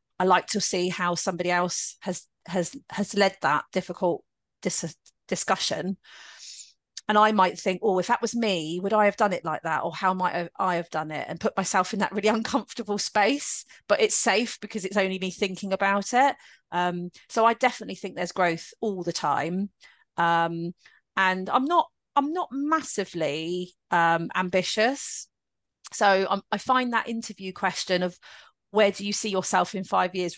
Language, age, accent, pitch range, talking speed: English, 30-49, British, 175-210 Hz, 175 wpm